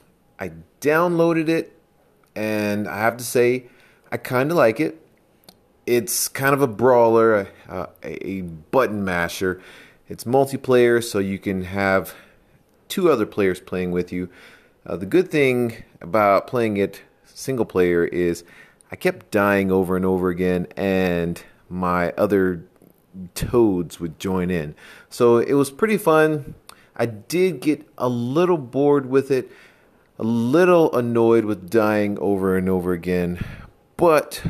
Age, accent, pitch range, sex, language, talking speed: 30-49, American, 95-120 Hz, male, English, 140 wpm